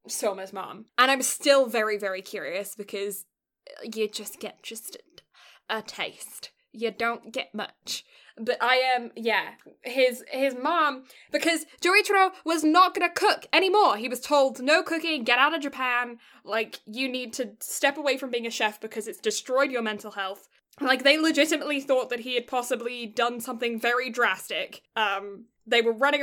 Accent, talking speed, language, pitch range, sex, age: British, 170 wpm, English, 225-275 Hz, female, 10-29